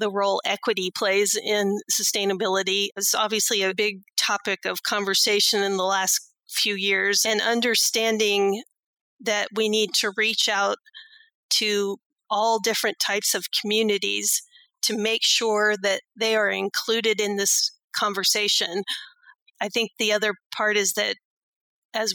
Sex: female